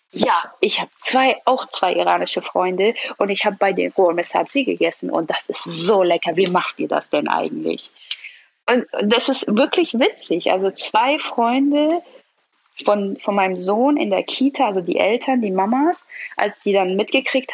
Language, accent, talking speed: German, German, 170 wpm